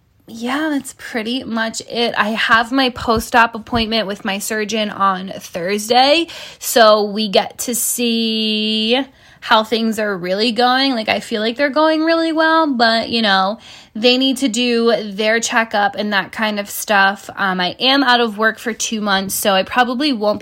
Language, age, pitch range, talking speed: English, 10-29, 200-240 Hz, 175 wpm